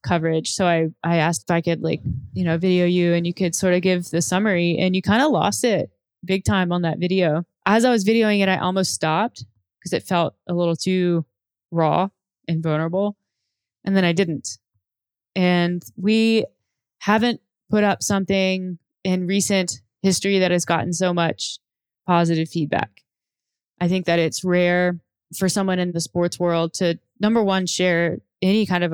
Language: English